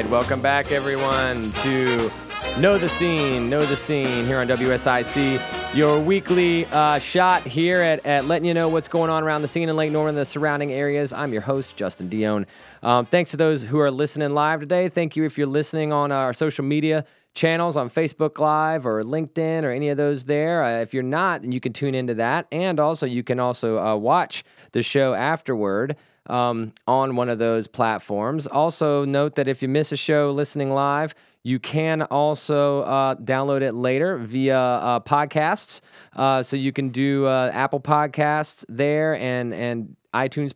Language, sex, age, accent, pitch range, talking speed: English, male, 30-49, American, 120-155 Hz, 190 wpm